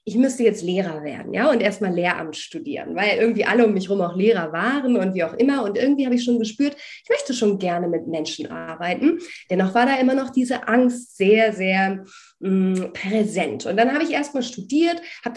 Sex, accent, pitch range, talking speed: female, German, 200-260 Hz, 210 wpm